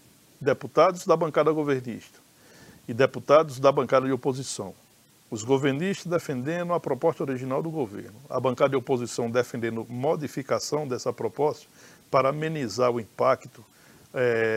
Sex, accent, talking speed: male, Brazilian, 125 wpm